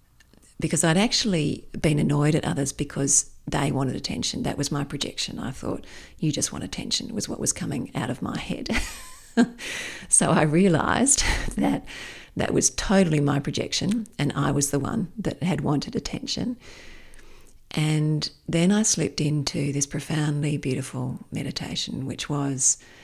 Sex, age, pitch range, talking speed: female, 40-59, 130-155 Hz, 150 wpm